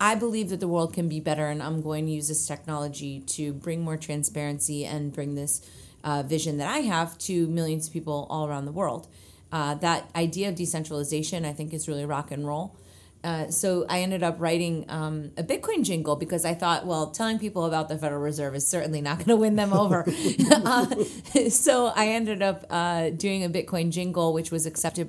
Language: English